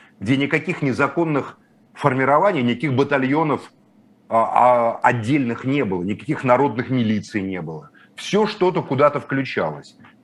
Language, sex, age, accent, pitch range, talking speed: Russian, male, 30-49, native, 115-145 Hz, 115 wpm